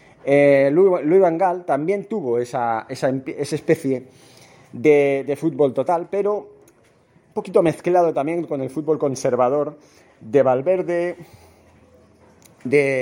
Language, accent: Spanish, Spanish